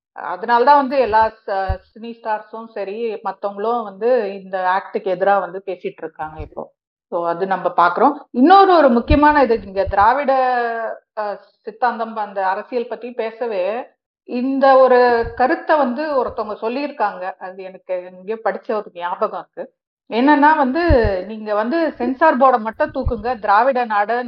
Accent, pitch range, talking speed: native, 195-255 Hz, 130 wpm